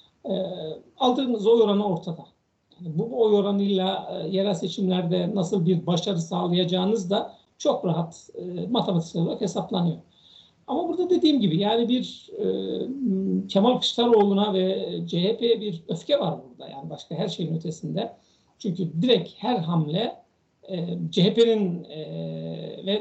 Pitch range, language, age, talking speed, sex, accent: 170-210 Hz, Turkish, 60-79, 135 wpm, male, native